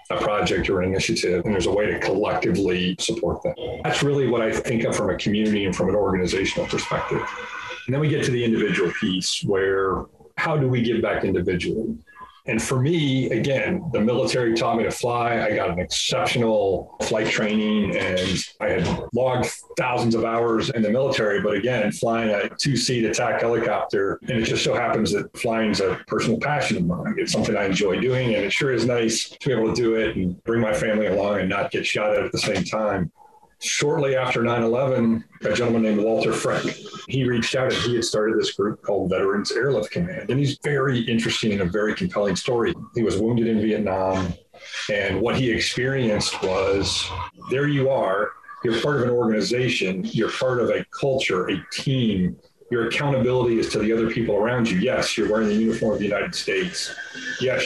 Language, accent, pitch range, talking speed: English, American, 110-130 Hz, 200 wpm